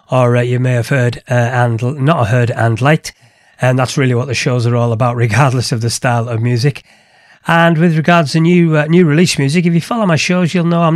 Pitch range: 125-160 Hz